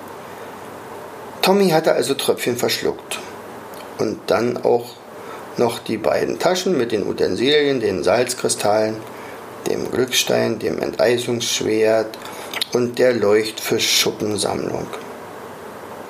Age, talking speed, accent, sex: 50-69, 90 wpm, German, male